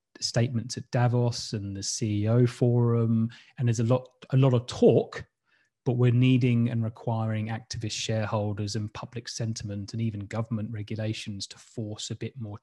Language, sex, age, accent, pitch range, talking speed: English, male, 20-39, British, 105-120 Hz, 160 wpm